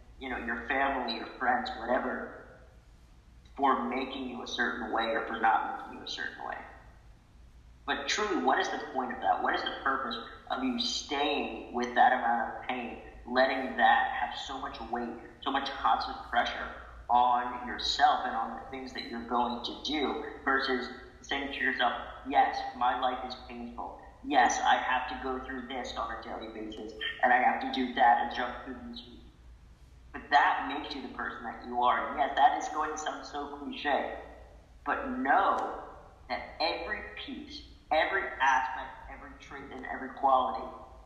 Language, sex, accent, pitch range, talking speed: English, male, American, 110-140 Hz, 180 wpm